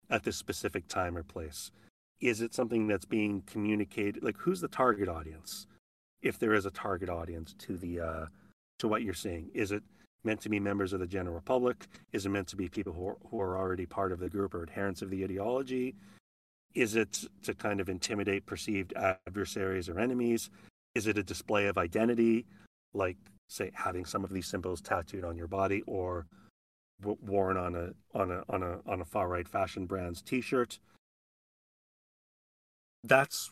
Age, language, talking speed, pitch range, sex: 40-59, English, 185 wpm, 90-110 Hz, male